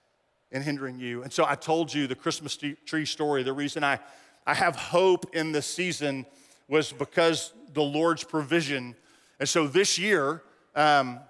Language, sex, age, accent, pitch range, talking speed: English, male, 40-59, American, 145-175 Hz, 165 wpm